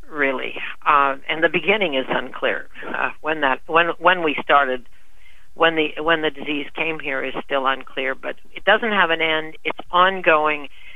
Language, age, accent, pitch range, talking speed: English, 60-79, American, 140-165 Hz, 175 wpm